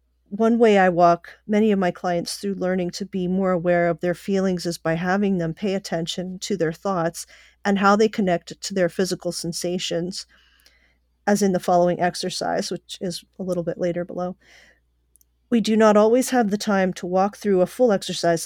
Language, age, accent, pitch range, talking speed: English, 40-59, American, 175-205 Hz, 190 wpm